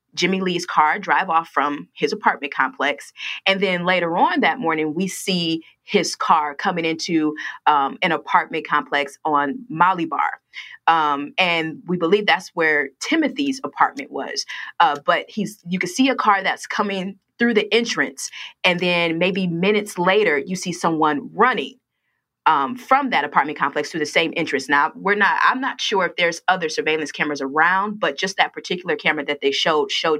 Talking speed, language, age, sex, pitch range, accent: 175 wpm, English, 30-49, female, 150-190 Hz, American